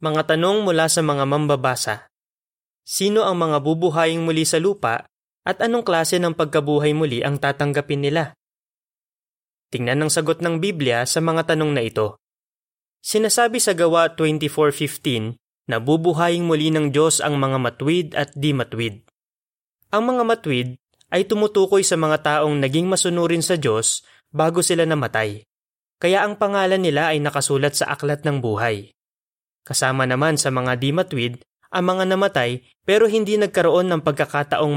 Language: Filipino